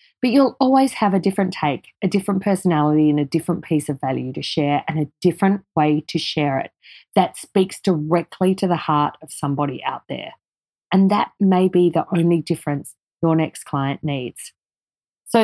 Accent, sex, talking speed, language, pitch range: Australian, female, 185 wpm, English, 155-205 Hz